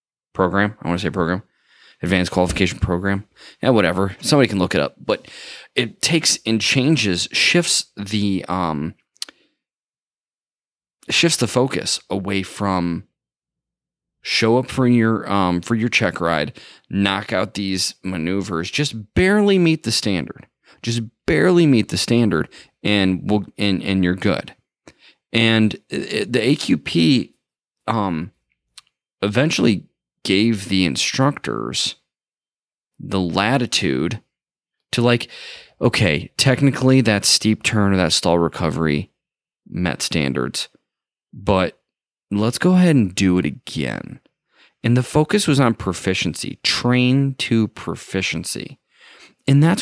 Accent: American